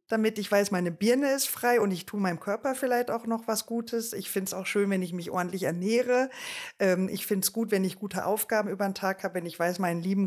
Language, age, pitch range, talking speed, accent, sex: German, 50-69, 175-225 Hz, 255 wpm, German, female